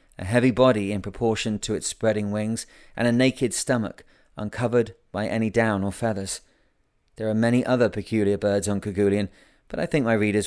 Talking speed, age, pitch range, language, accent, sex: 185 wpm, 30-49, 100-120 Hz, English, British, male